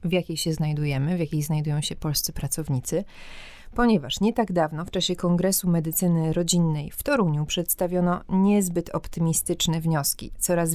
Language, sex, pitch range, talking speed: Polish, female, 160-195 Hz, 145 wpm